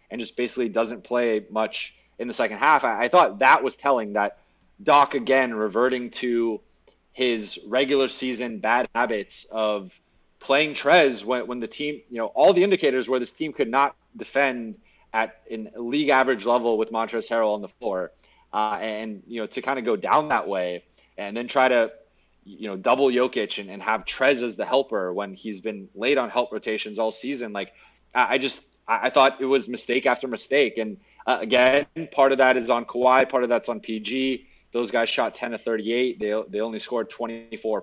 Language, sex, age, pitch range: English, male, 20-39, 110-130 Hz